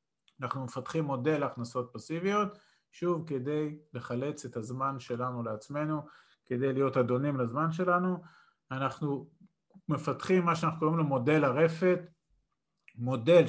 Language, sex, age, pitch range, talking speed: Hebrew, male, 40-59, 130-165 Hz, 115 wpm